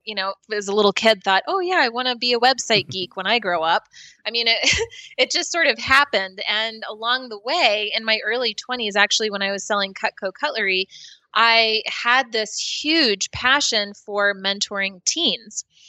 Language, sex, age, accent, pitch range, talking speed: English, female, 20-39, American, 195-235 Hz, 195 wpm